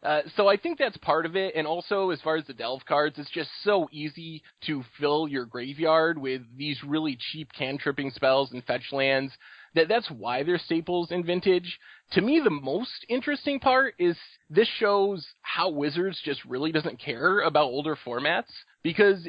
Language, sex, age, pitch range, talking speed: English, male, 20-39, 140-185 Hz, 185 wpm